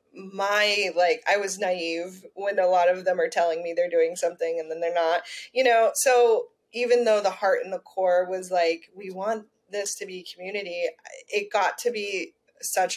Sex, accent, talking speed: female, American, 200 wpm